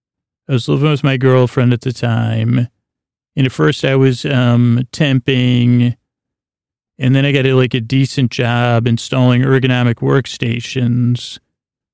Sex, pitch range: male, 120-130 Hz